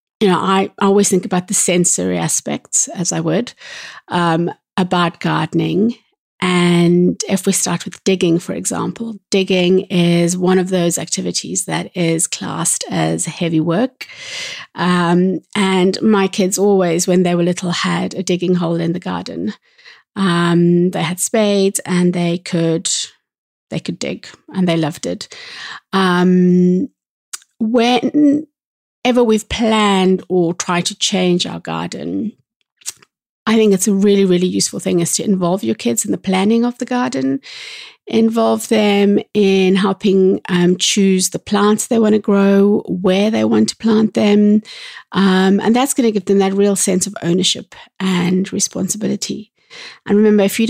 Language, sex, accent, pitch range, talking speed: English, female, British, 175-210 Hz, 155 wpm